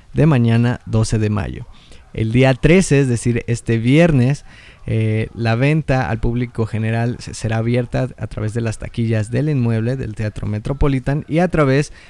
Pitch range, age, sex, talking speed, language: 115-140 Hz, 20-39, male, 165 wpm, Spanish